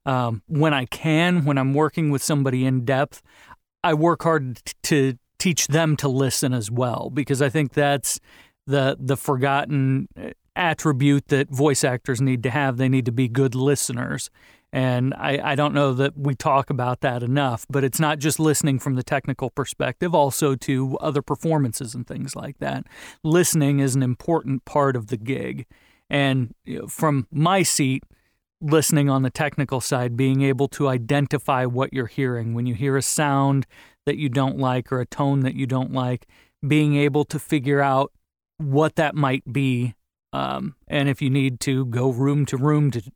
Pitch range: 130-150 Hz